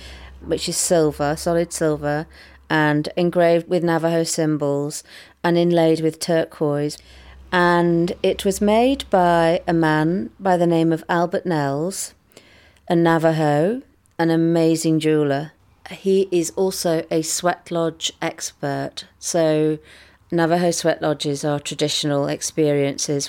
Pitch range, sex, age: 145-170 Hz, female, 40-59